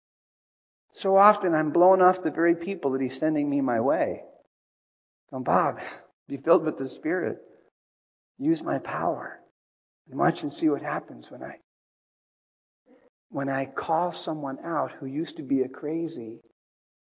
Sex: male